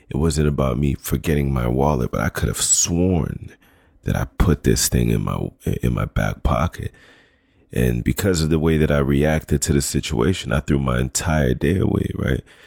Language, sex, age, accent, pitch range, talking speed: English, male, 30-49, American, 70-85 Hz, 195 wpm